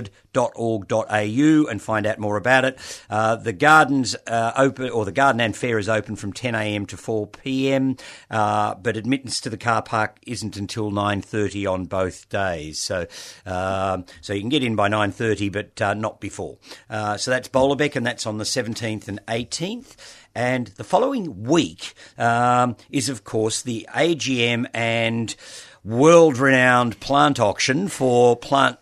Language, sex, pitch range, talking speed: English, male, 105-125 Hz, 180 wpm